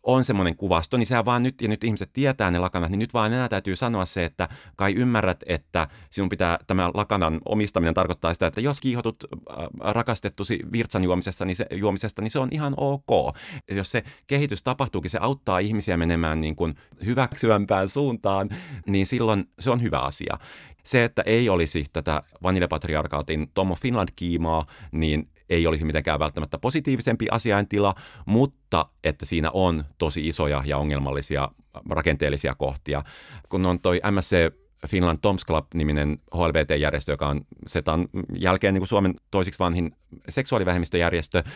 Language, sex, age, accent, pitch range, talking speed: Finnish, male, 30-49, native, 80-110 Hz, 155 wpm